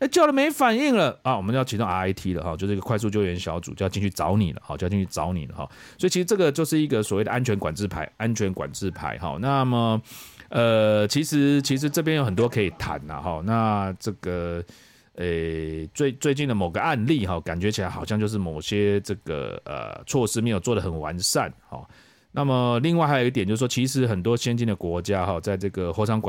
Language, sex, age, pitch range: English, male, 30-49, 100-155 Hz